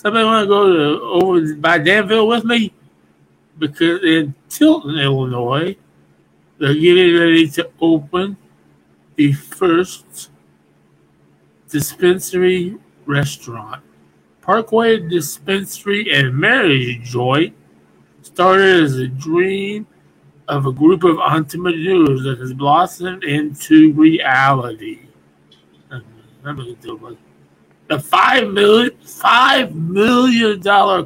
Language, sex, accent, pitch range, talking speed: English, male, American, 130-200 Hz, 100 wpm